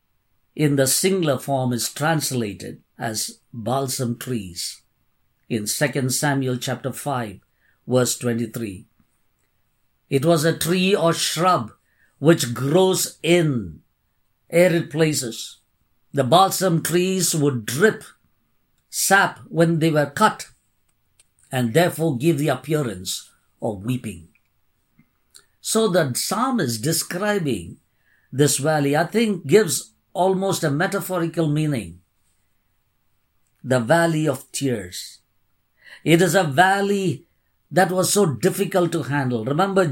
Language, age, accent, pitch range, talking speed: English, 50-69, Indian, 120-180 Hz, 110 wpm